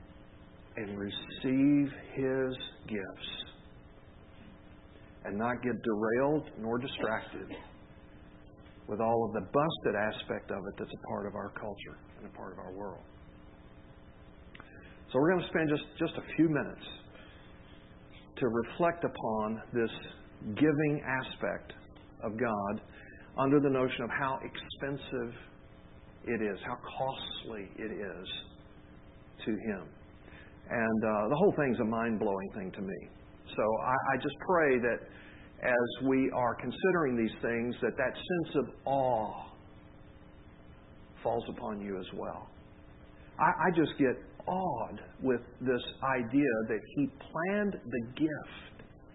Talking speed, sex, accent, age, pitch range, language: 130 wpm, male, American, 50-69, 100-155 Hz, English